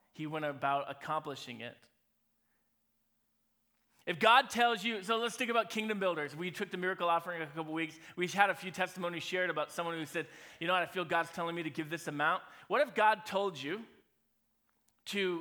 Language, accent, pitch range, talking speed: English, American, 150-185 Hz, 205 wpm